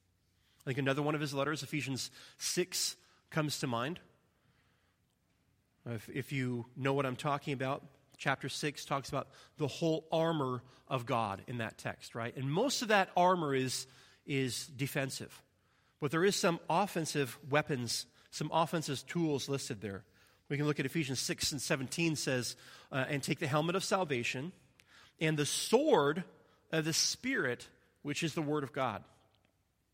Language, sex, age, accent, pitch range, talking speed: English, male, 30-49, American, 125-160 Hz, 160 wpm